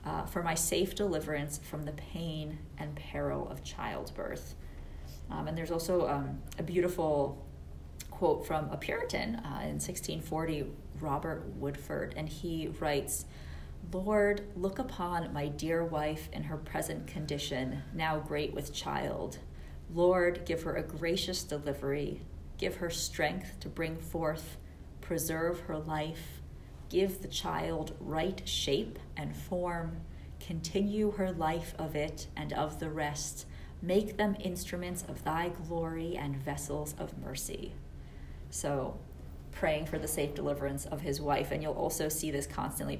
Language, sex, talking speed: English, female, 140 wpm